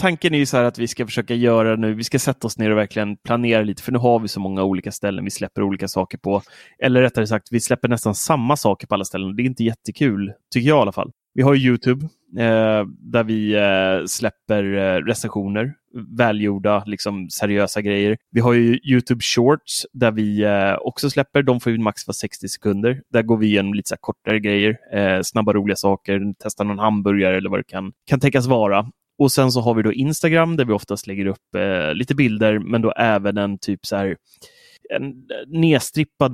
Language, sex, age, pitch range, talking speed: Swedish, male, 20-39, 105-125 Hz, 205 wpm